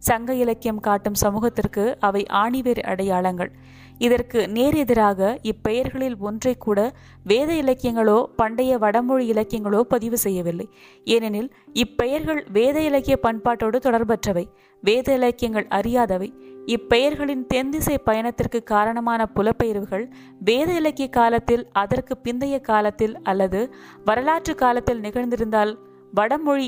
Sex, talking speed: female, 95 wpm